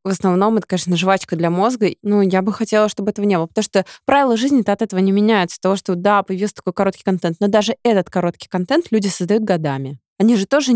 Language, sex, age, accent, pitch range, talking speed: Russian, female, 20-39, native, 185-220 Hz, 235 wpm